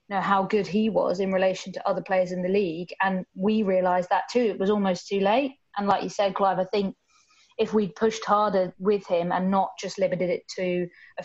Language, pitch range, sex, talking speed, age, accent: English, 185-215 Hz, female, 230 wpm, 20-39, British